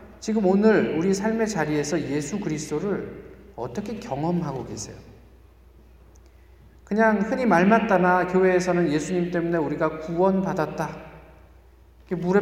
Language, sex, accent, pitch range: Korean, male, native, 140-210 Hz